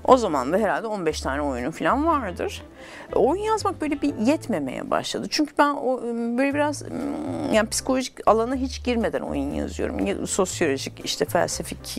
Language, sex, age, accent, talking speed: Turkish, female, 50-69, native, 145 wpm